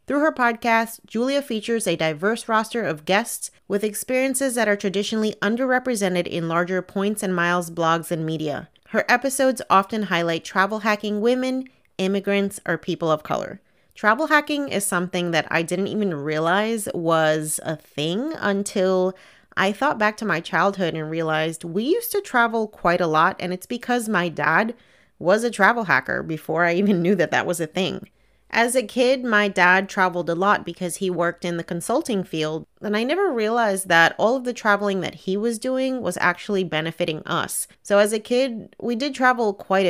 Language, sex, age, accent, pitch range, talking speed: English, female, 30-49, American, 170-230 Hz, 185 wpm